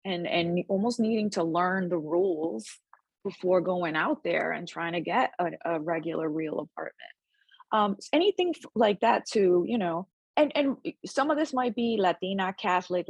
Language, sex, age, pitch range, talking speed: English, female, 20-39, 175-230 Hz, 170 wpm